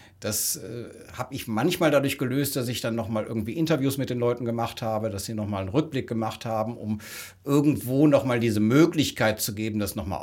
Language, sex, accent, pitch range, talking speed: German, male, German, 110-145 Hz, 195 wpm